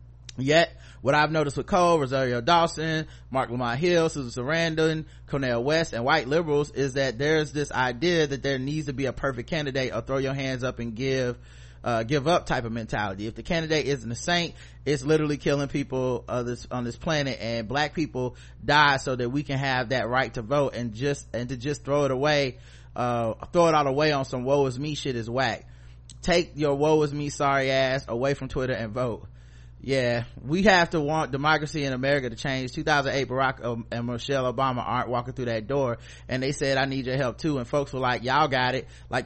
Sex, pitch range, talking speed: male, 120-150 Hz, 215 wpm